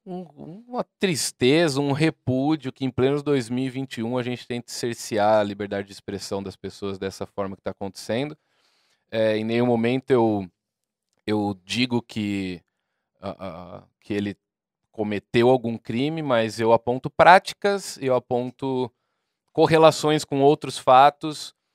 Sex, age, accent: male, 20-39, Brazilian